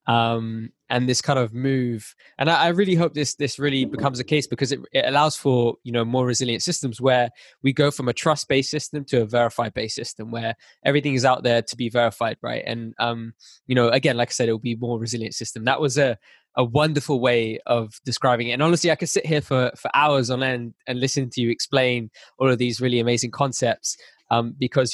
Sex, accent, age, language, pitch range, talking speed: male, British, 20-39, English, 120-140 Hz, 230 wpm